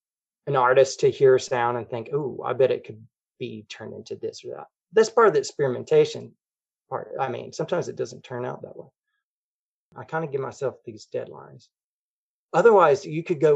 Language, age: English, 30-49